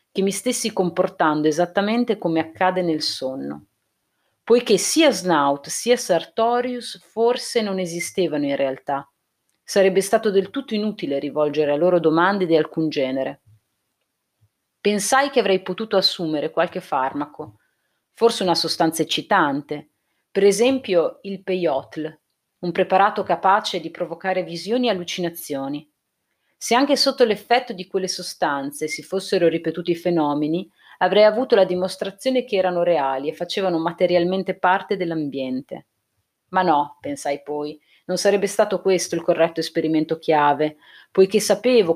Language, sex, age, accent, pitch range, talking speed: Italian, female, 40-59, native, 155-195 Hz, 130 wpm